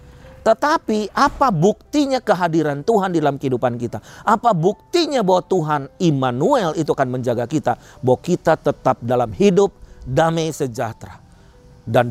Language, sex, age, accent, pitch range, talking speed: Indonesian, male, 40-59, native, 150-245 Hz, 130 wpm